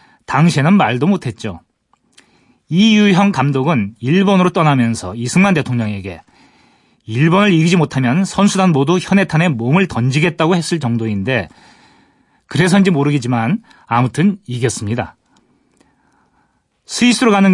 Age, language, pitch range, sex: 30-49, Korean, 125-195 Hz, male